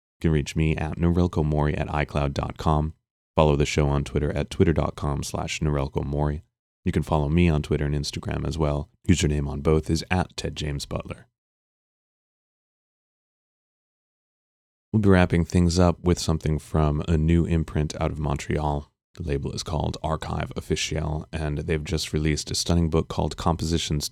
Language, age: English, 30-49